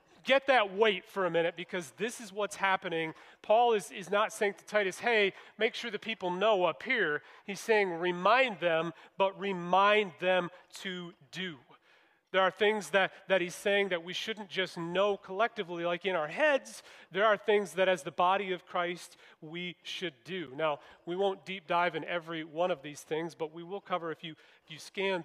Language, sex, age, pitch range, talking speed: English, male, 40-59, 165-195 Hz, 200 wpm